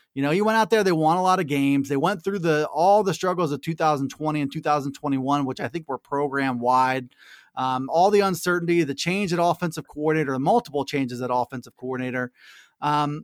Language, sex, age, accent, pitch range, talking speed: English, male, 30-49, American, 145-190 Hz, 205 wpm